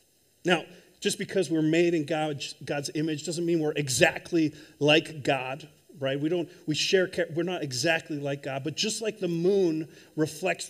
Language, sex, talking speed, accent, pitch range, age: English, male, 170 wpm, American, 135-180 Hz, 40-59